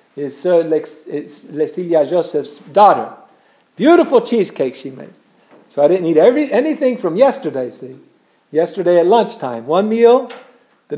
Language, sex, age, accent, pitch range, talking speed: English, male, 50-69, American, 170-240 Hz, 140 wpm